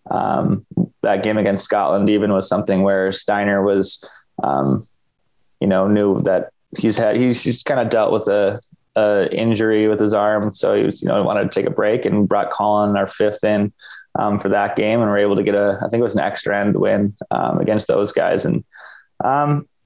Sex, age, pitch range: male, 20-39, 100-110 Hz